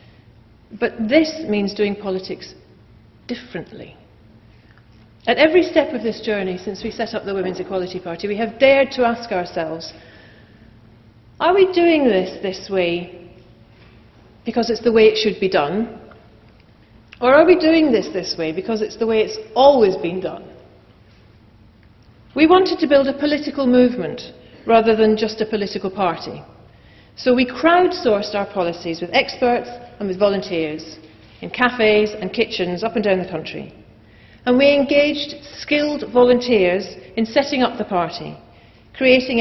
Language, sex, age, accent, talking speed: English, female, 40-59, British, 150 wpm